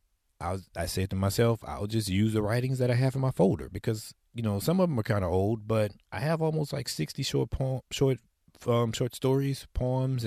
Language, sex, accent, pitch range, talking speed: English, male, American, 95-120 Hz, 235 wpm